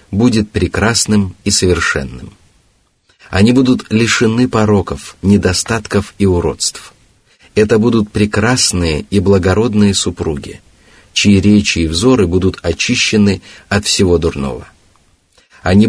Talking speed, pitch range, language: 100 wpm, 90-110 Hz, Russian